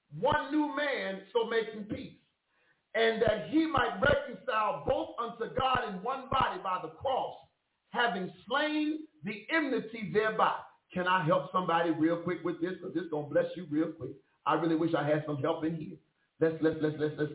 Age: 50-69